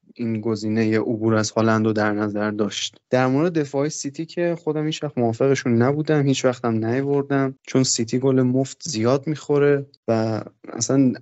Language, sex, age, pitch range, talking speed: Persian, male, 20-39, 115-140 Hz, 160 wpm